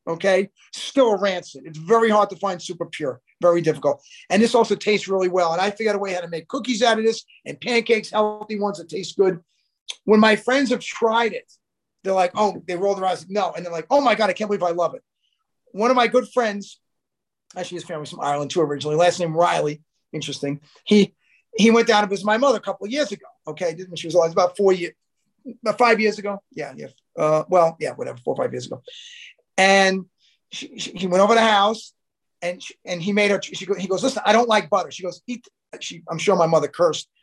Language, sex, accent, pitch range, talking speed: English, male, American, 180-230 Hz, 240 wpm